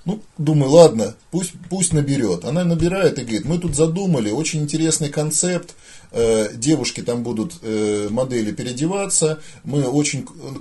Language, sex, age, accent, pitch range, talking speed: Russian, male, 30-49, native, 140-175 Hz, 140 wpm